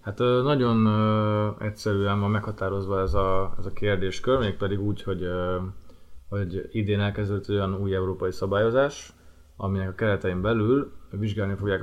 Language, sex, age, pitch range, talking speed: Hungarian, male, 20-39, 90-105 Hz, 145 wpm